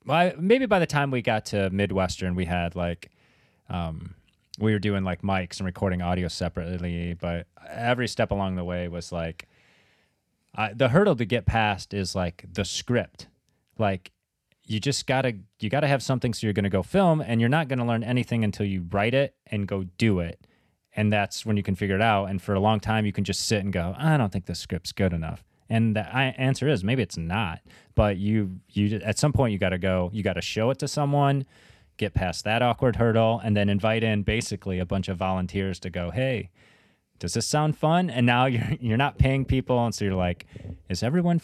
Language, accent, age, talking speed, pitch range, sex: English, American, 30-49, 220 wpm, 95-130 Hz, male